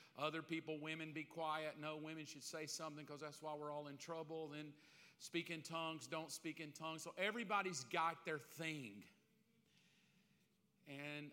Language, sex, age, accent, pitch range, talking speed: English, male, 40-59, American, 150-180 Hz, 165 wpm